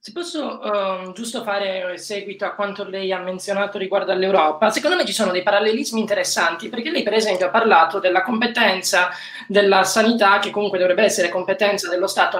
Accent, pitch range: native, 190-230 Hz